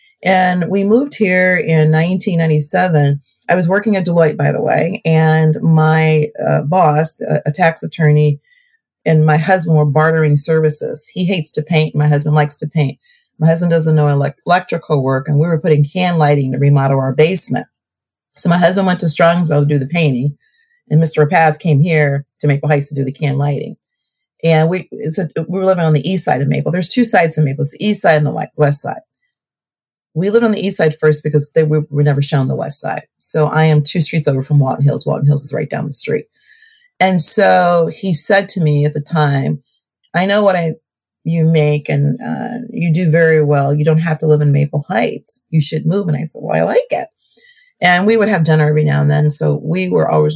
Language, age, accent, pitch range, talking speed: English, 40-59, American, 150-180 Hz, 225 wpm